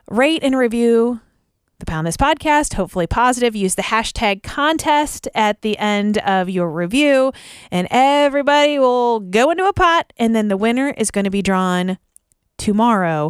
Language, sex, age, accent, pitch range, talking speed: English, female, 30-49, American, 185-275 Hz, 160 wpm